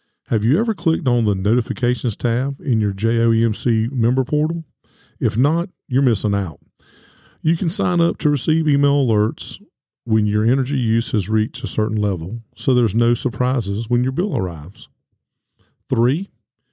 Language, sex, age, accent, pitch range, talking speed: English, male, 50-69, American, 110-135 Hz, 160 wpm